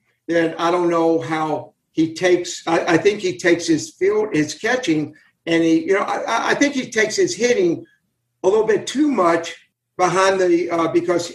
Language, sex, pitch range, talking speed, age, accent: English, male, 160-235 Hz, 180 wpm, 60-79, American